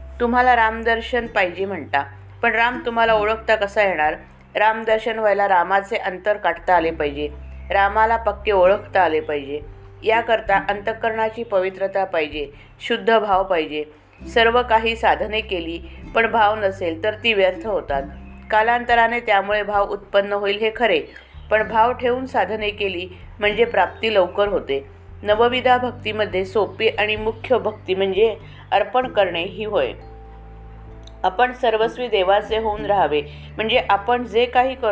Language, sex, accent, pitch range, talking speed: Marathi, female, native, 165-225 Hz, 90 wpm